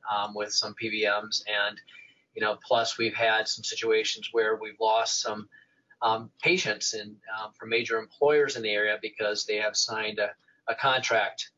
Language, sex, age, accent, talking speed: English, male, 30-49, American, 165 wpm